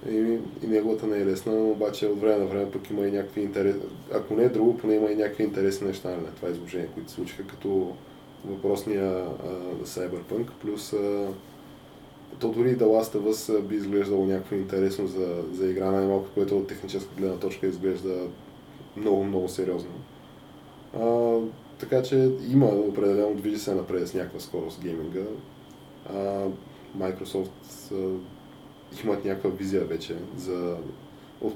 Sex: male